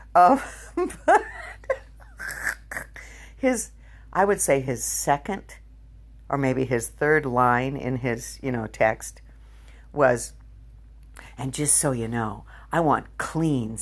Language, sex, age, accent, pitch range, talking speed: English, female, 60-79, American, 125-170 Hz, 115 wpm